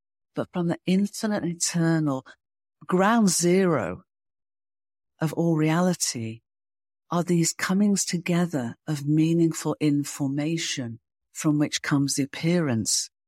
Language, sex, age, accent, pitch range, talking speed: English, female, 50-69, British, 135-165 Hz, 100 wpm